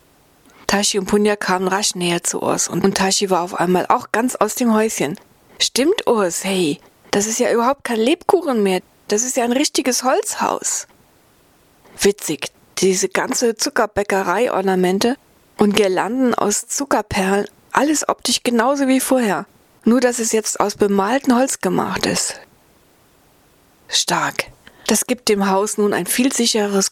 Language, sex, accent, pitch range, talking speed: German, female, German, 185-230 Hz, 145 wpm